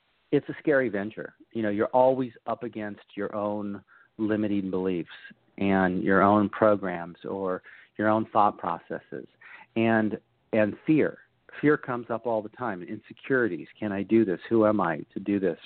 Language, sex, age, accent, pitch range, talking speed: English, male, 40-59, American, 105-125 Hz, 165 wpm